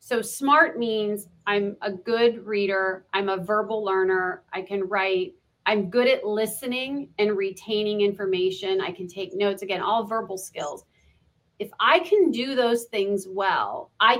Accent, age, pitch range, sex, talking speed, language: American, 40-59, 195-245 Hz, female, 155 wpm, English